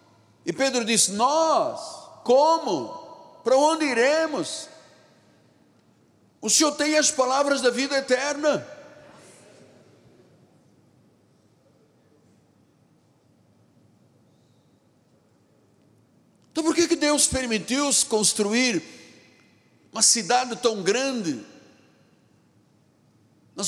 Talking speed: 70 wpm